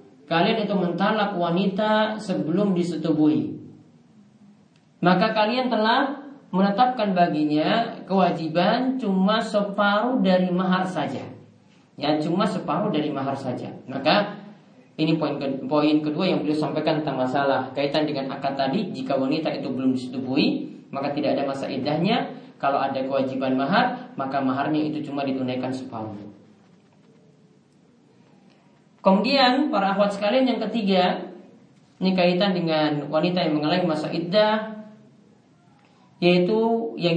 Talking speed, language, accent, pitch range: 120 wpm, Indonesian, native, 155-210 Hz